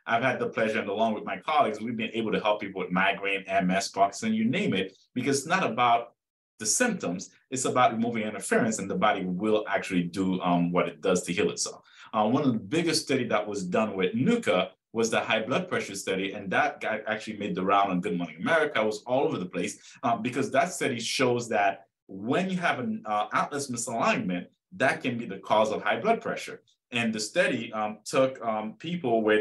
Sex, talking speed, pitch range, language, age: male, 220 wpm, 105-130 Hz, English, 30-49